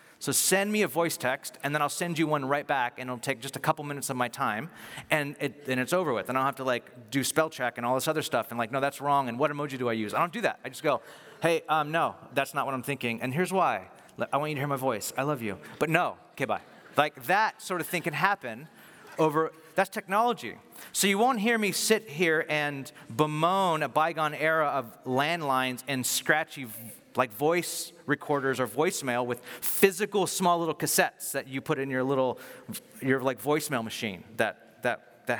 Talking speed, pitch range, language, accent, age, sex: 235 wpm, 125-160 Hz, English, American, 40-59, male